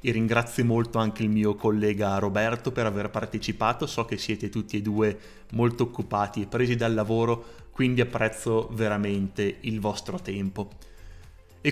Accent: native